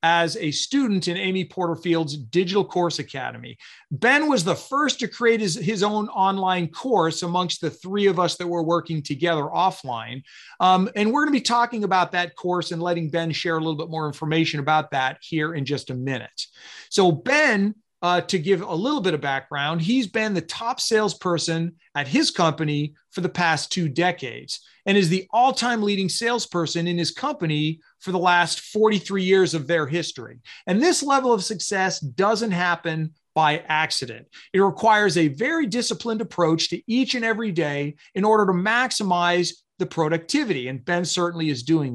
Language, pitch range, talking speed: English, 160-215 Hz, 180 wpm